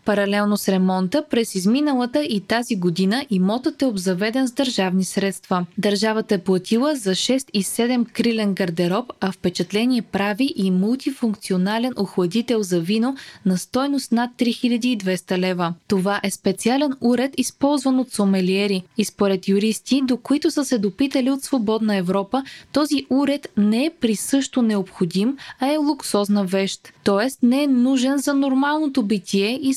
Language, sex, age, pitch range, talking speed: Bulgarian, female, 20-39, 195-260 Hz, 145 wpm